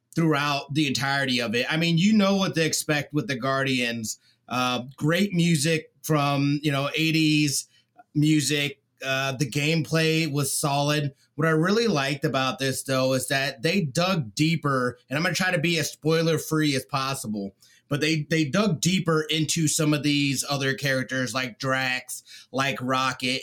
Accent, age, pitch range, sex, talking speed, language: American, 30-49, 135-170 Hz, male, 165 wpm, English